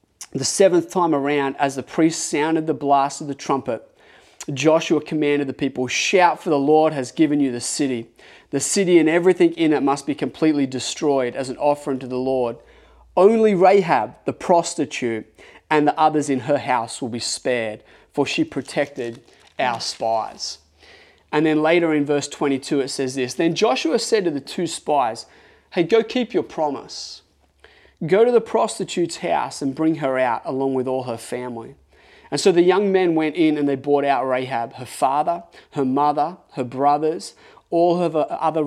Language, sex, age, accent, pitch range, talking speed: English, male, 30-49, Australian, 130-160 Hz, 180 wpm